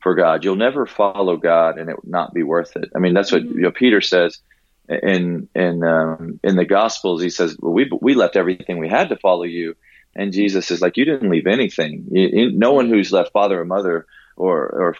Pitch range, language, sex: 90-110 Hz, English, male